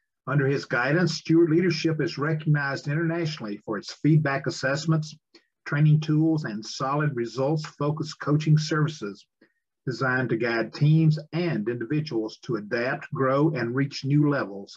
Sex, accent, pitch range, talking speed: male, American, 135-165 Hz, 130 wpm